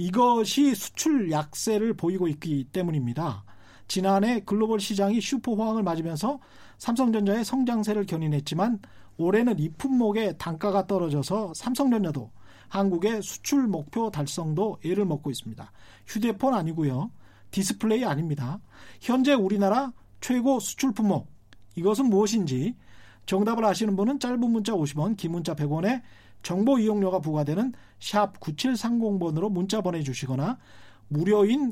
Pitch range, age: 140-220 Hz, 40-59